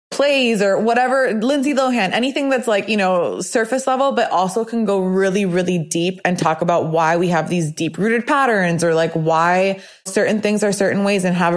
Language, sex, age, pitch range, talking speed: English, female, 20-39, 175-210 Hz, 200 wpm